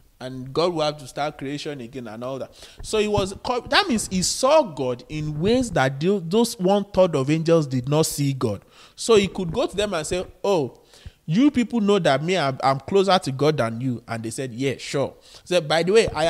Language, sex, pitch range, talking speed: English, male, 135-210 Hz, 230 wpm